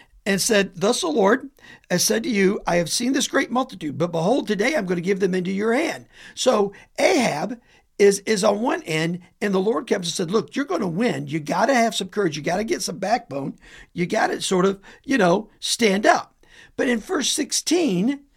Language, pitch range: English, 180-250 Hz